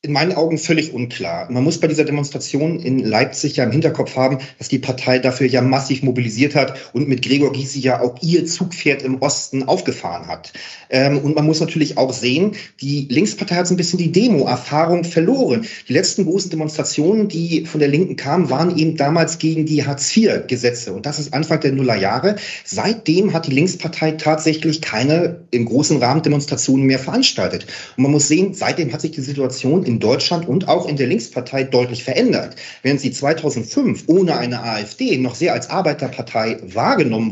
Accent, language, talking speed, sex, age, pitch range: German, German, 185 wpm, male, 40-59, 130-165 Hz